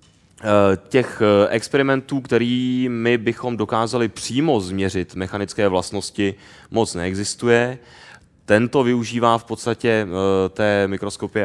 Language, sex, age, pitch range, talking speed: Czech, male, 20-39, 90-105 Hz, 95 wpm